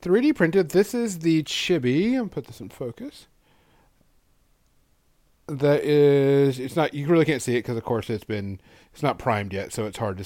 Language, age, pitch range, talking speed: English, 40-59, 105-145 Hz, 200 wpm